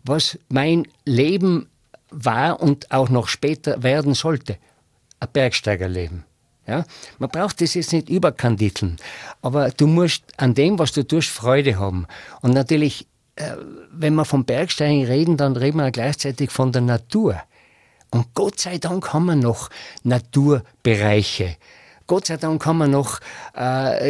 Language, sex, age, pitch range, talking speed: German, male, 50-69, 125-165 Hz, 145 wpm